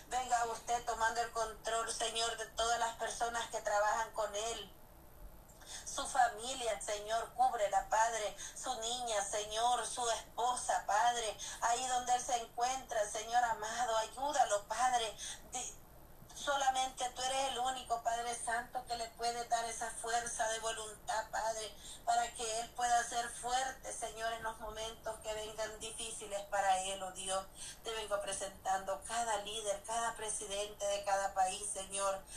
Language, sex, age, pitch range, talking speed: Spanish, female, 30-49, 210-235 Hz, 145 wpm